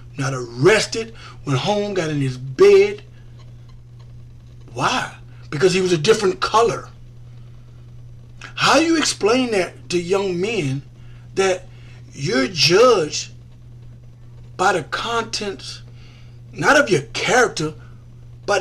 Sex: male